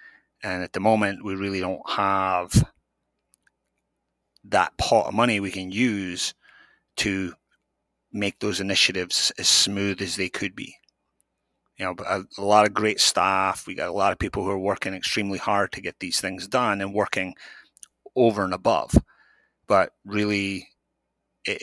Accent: British